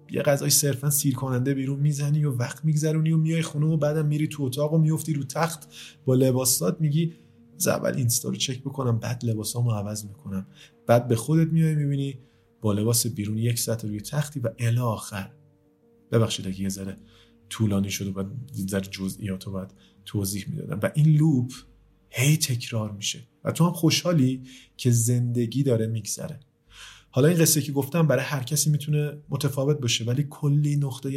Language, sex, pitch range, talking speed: Persian, male, 115-145 Hz, 170 wpm